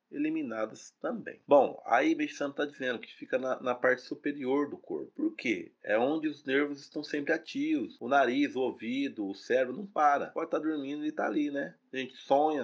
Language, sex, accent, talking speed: Portuguese, male, Brazilian, 210 wpm